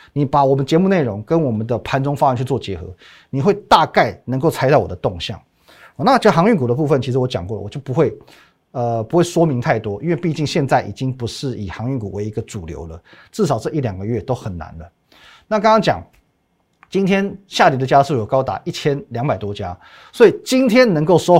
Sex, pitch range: male, 115-165 Hz